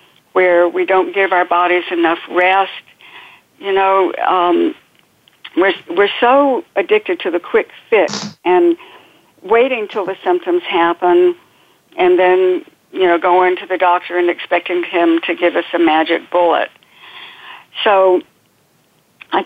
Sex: female